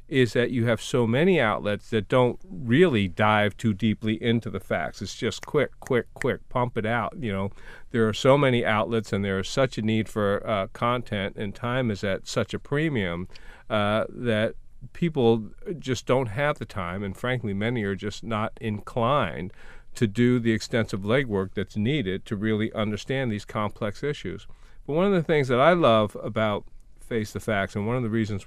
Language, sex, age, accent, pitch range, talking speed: English, male, 40-59, American, 105-125 Hz, 190 wpm